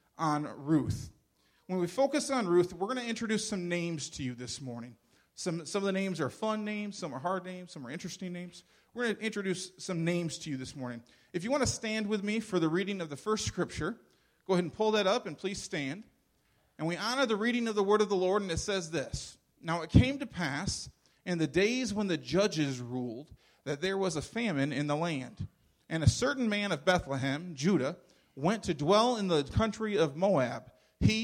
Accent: American